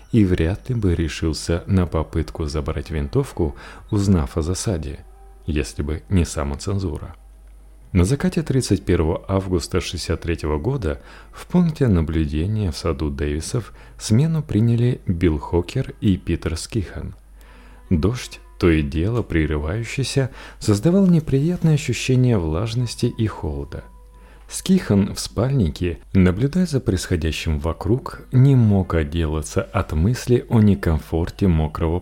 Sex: male